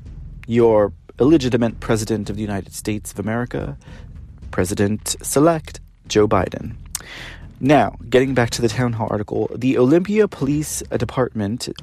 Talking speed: 125 wpm